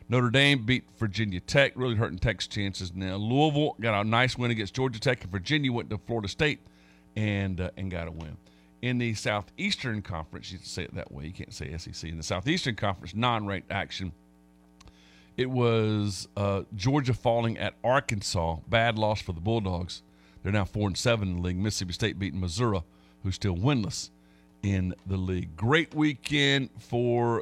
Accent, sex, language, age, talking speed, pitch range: American, male, English, 50-69, 180 wpm, 95-130 Hz